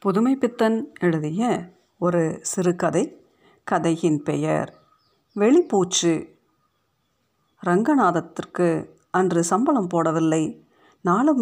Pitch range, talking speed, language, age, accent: 170-215 Hz, 70 wpm, Tamil, 50-69, native